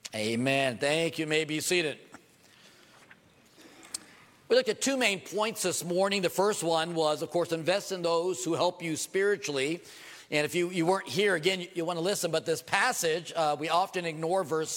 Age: 50-69